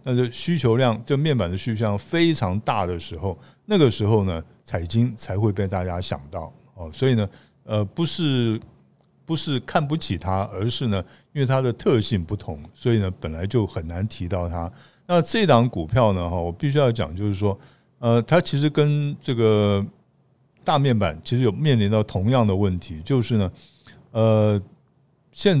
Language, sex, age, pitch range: Chinese, male, 60-79, 95-130 Hz